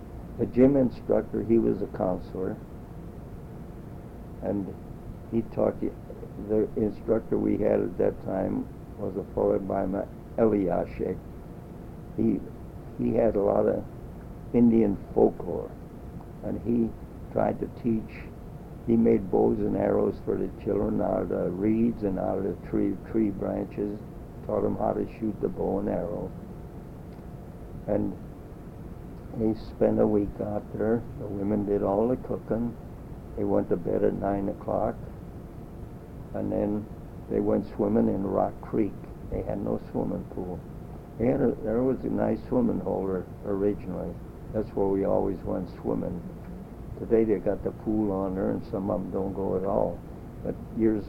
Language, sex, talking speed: English, male, 150 wpm